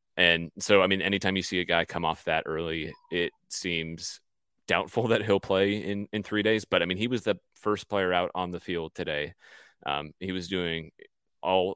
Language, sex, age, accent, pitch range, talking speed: English, male, 30-49, American, 85-95 Hz, 210 wpm